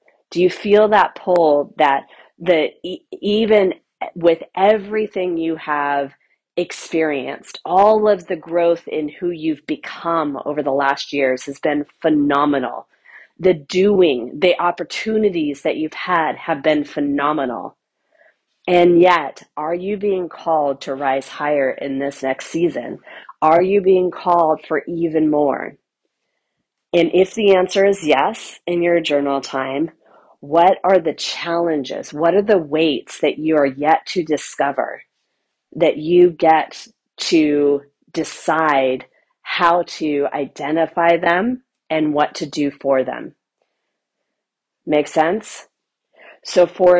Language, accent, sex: English, American, female